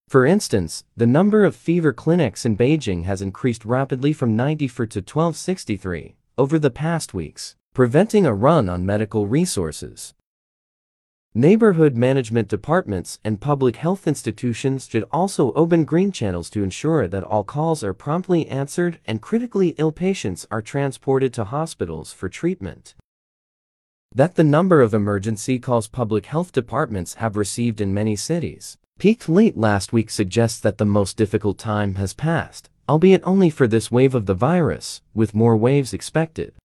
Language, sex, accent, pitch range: Chinese, male, American, 110-160 Hz